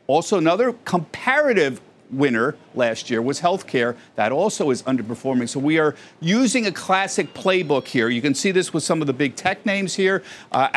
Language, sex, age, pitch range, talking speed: English, male, 50-69, 135-185 Hz, 185 wpm